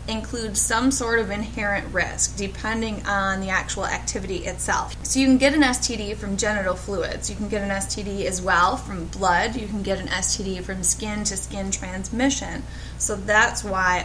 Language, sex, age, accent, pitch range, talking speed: English, female, 10-29, American, 195-240 Hz, 175 wpm